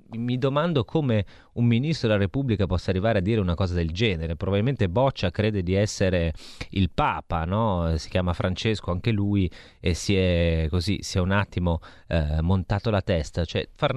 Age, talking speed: 30-49, 180 wpm